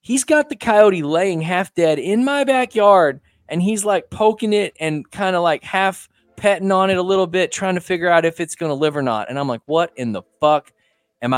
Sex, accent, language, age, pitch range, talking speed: male, American, English, 20-39, 120-180 Hz, 235 wpm